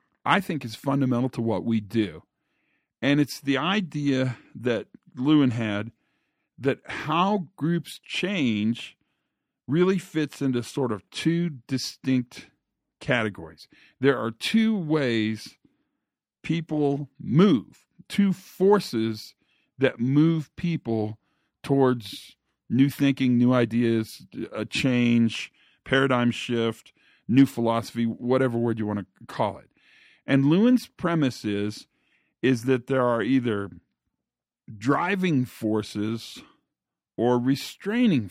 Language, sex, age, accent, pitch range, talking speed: English, male, 50-69, American, 115-145 Hz, 110 wpm